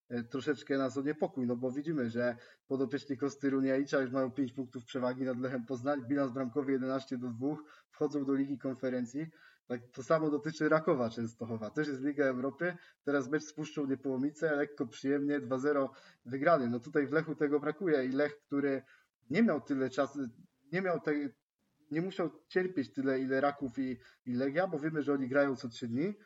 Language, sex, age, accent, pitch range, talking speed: Polish, male, 20-39, native, 135-155 Hz, 180 wpm